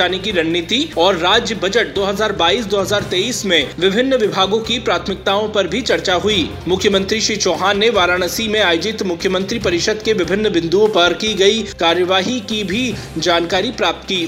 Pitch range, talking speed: 185-220 Hz, 150 wpm